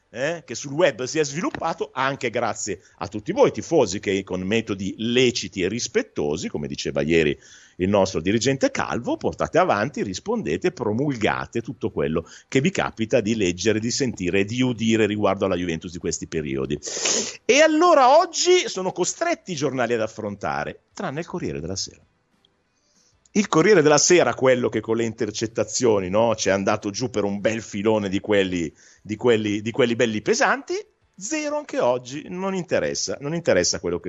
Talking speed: 170 wpm